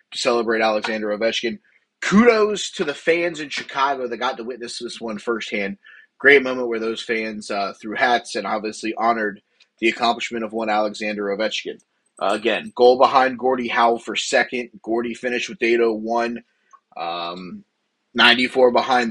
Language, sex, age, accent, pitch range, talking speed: English, male, 30-49, American, 110-125 Hz, 155 wpm